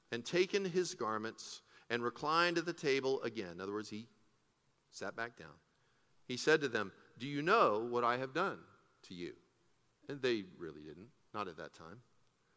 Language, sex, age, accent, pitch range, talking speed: English, male, 40-59, American, 125-180 Hz, 180 wpm